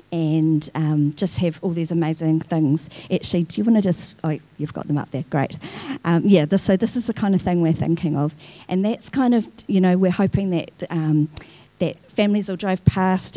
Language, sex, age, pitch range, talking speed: English, female, 50-69, 160-190 Hz, 220 wpm